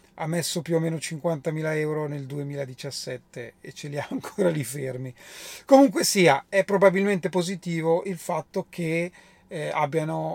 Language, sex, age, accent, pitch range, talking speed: Italian, male, 30-49, native, 145-185 Hz, 150 wpm